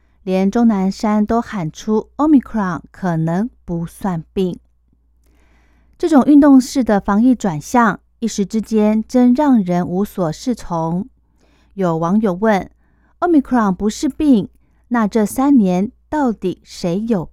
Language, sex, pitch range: Chinese, female, 175-235 Hz